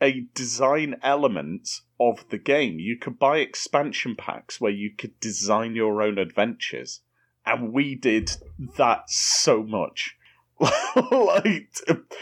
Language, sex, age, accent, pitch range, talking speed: English, male, 30-49, British, 120-150 Hz, 125 wpm